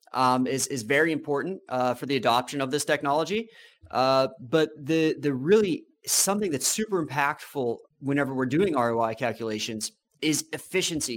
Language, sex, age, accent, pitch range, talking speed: English, male, 30-49, American, 130-160 Hz, 150 wpm